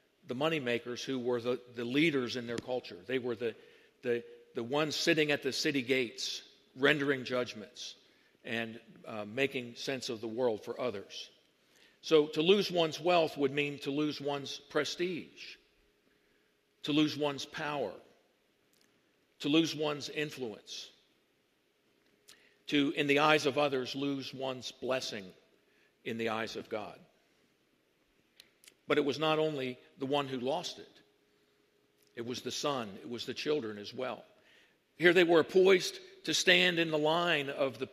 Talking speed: 150 wpm